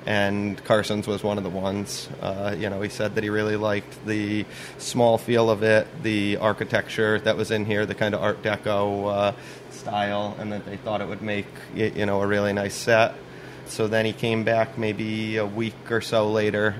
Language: English